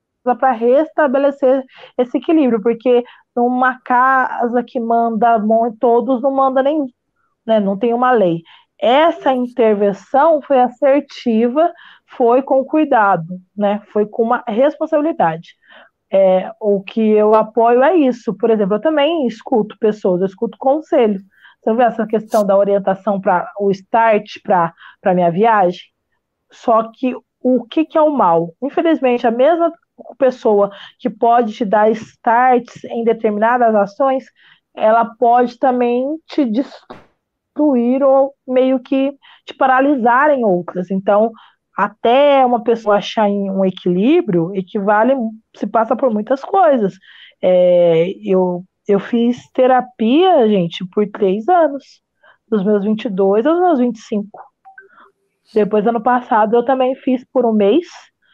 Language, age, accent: Portuguese, 20-39, Brazilian